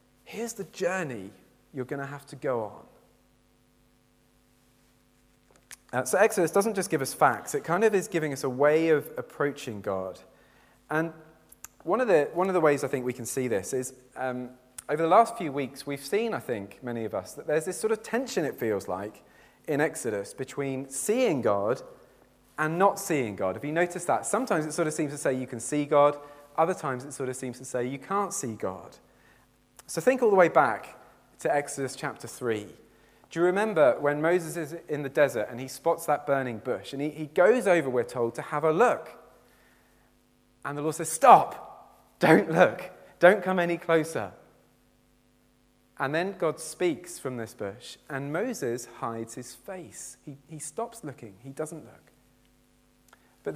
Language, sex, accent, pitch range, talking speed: English, male, British, 125-170 Hz, 185 wpm